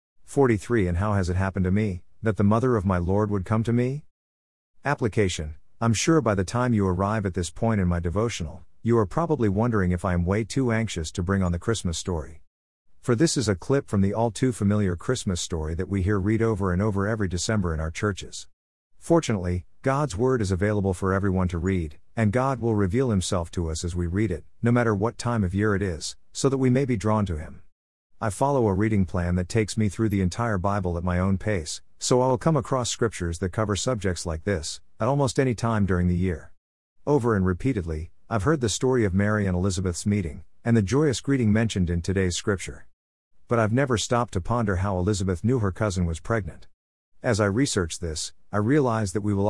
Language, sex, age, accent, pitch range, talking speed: English, male, 50-69, American, 90-115 Hz, 225 wpm